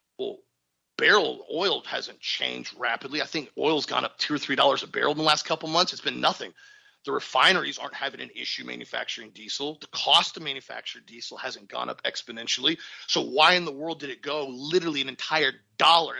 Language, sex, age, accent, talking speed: English, male, 40-59, American, 200 wpm